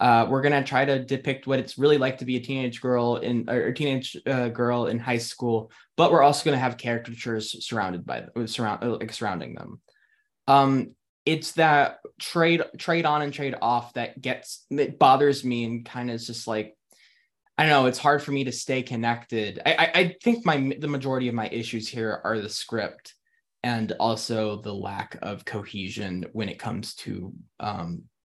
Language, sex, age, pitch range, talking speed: English, male, 10-29, 115-160 Hz, 195 wpm